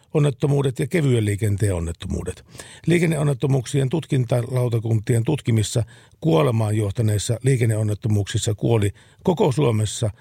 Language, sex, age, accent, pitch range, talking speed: Finnish, male, 50-69, native, 105-135 Hz, 80 wpm